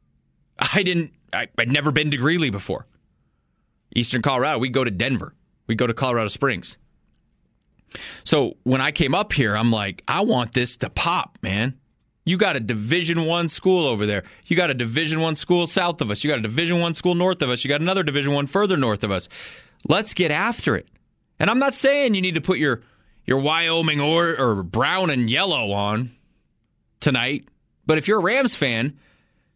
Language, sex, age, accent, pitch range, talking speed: English, male, 30-49, American, 125-185 Hz, 195 wpm